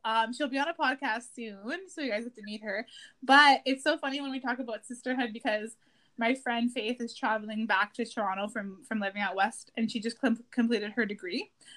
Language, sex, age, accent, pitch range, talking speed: English, female, 20-39, American, 230-295 Hz, 225 wpm